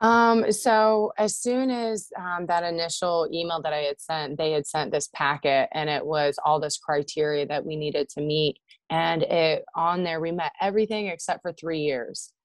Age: 20-39